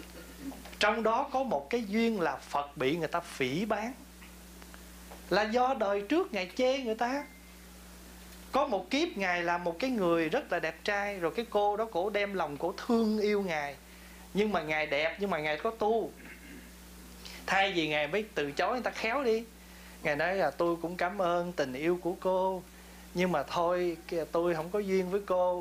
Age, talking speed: 20-39, 195 wpm